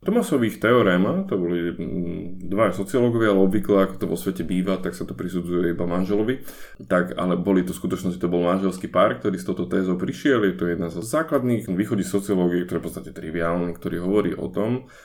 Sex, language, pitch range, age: male, Slovak, 90-115 Hz, 20-39